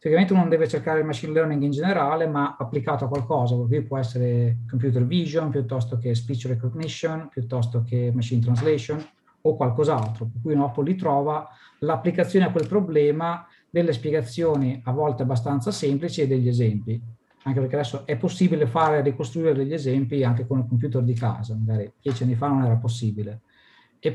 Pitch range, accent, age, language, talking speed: 125-155 Hz, native, 50-69, Italian, 170 wpm